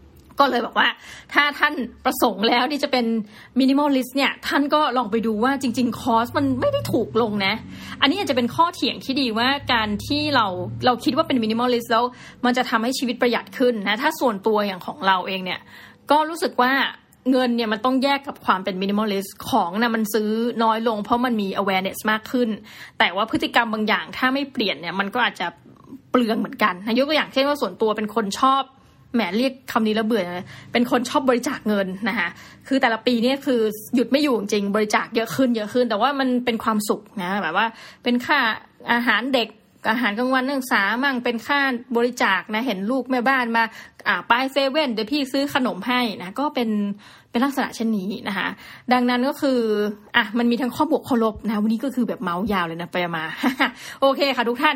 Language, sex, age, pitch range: Thai, female, 20-39, 215-260 Hz